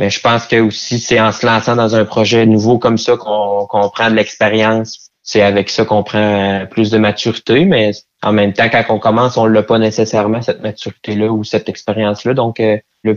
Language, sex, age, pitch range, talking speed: French, male, 20-39, 105-115 Hz, 210 wpm